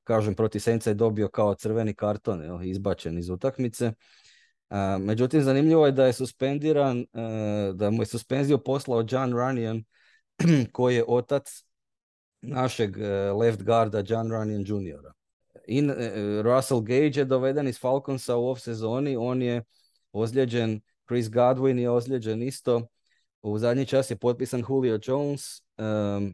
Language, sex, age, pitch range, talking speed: Croatian, male, 30-49, 105-130 Hz, 130 wpm